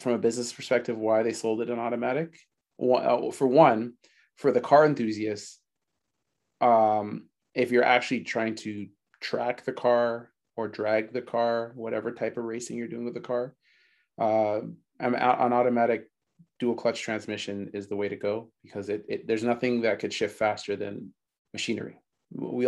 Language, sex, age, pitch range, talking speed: English, male, 30-49, 110-120 Hz, 160 wpm